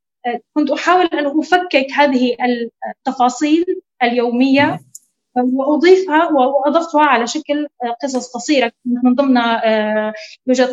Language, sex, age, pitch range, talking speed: Arabic, female, 20-39, 245-315 Hz, 90 wpm